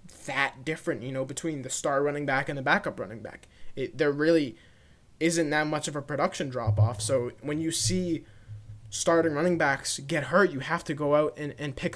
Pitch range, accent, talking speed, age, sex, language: 125-165 Hz, American, 210 wpm, 20-39, male, English